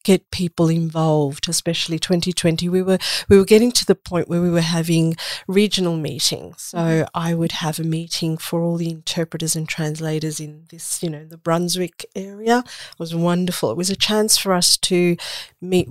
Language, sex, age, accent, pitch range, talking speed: English, female, 50-69, Australian, 160-185 Hz, 185 wpm